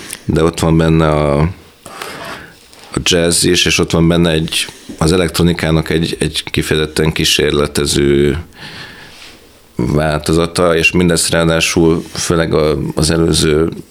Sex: male